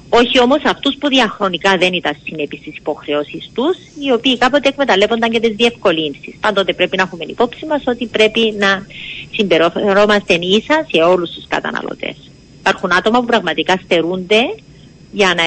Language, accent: Greek, Spanish